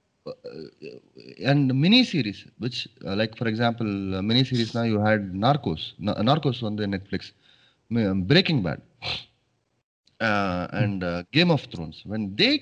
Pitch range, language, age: 105-150 Hz, Tamil, 30-49